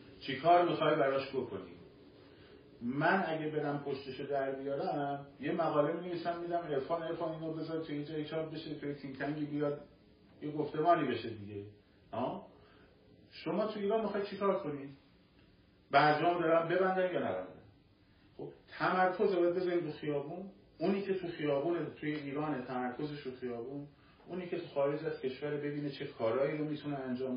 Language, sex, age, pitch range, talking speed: Persian, male, 50-69, 125-175 Hz, 155 wpm